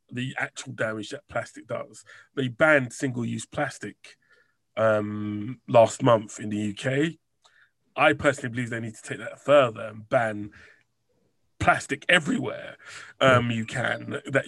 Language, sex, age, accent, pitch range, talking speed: English, male, 30-49, British, 120-150 Hz, 135 wpm